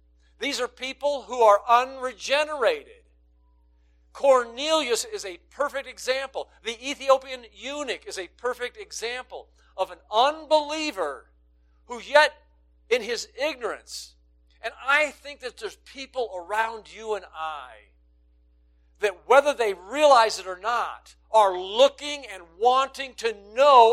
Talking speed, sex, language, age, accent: 125 wpm, male, English, 50-69, American